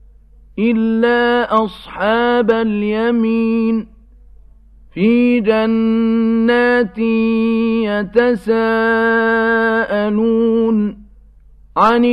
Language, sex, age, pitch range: Arabic, male, 50-69, 210-230 Hz